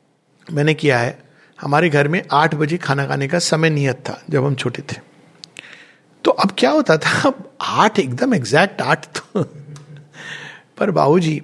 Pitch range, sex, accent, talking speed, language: 140-205 Hz, male, native, 165 wpm, Hindi